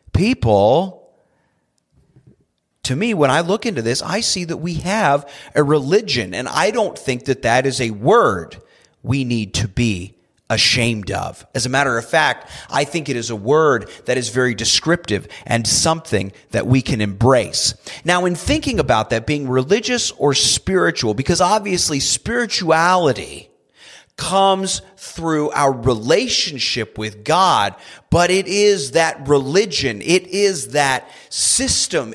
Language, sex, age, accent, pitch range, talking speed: English, male, 30-49, American, 115-180 Hz, 145 wpm